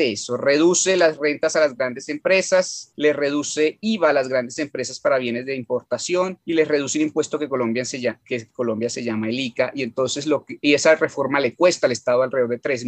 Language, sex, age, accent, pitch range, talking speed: English, male, 30-49, Colombian, 120-155 Hz, 225 wpm